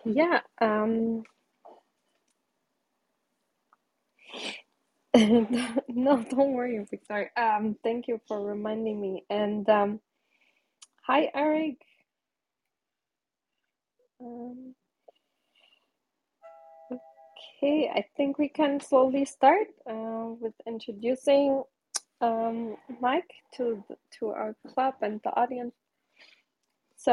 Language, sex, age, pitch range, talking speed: English, female, 20-39, 225-270 Hz, 80 wpm